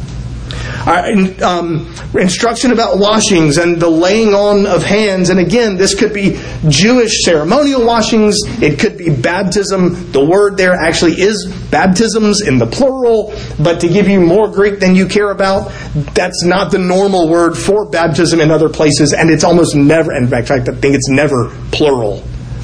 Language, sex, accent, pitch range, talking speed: English, male, American, 155-205 Hz, 170 wpm